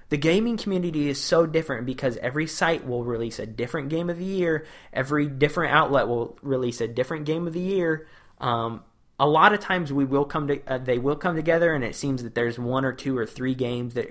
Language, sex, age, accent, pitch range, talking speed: English, male, 20-39, American, 120-150 Hz, 230 wpm